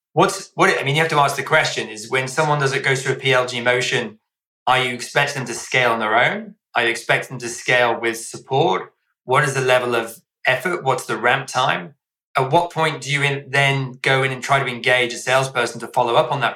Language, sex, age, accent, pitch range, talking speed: English, male, 20-39, British, 120-135 Hz, 245 wpm